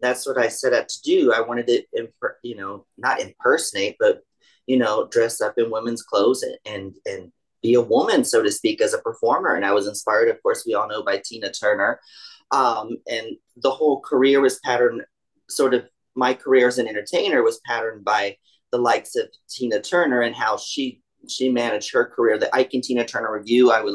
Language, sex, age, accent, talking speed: English, male, 30-49, American, 210 wpm